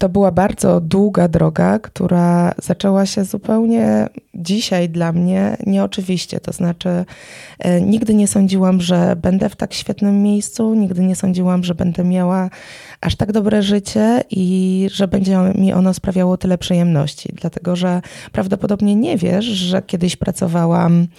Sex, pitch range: female, 180-205 Hz